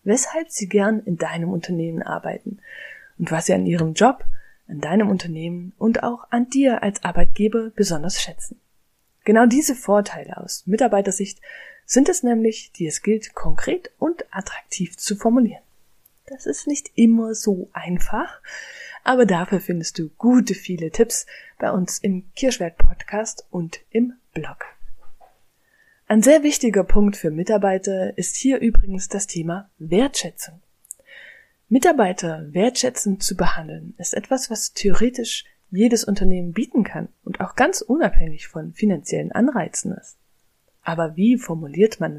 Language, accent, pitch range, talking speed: German, German, 180-245 Hz, 135 wpm